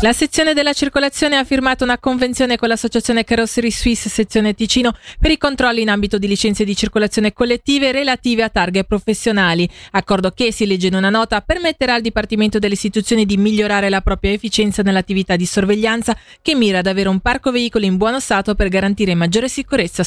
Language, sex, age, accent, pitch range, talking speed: Italian, female, 30-49, native, 195-250 Hz, 185 wpm